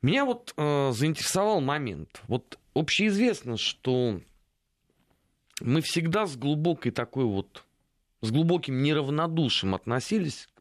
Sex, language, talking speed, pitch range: male, Russian, 100 wpm, 105-175 Hz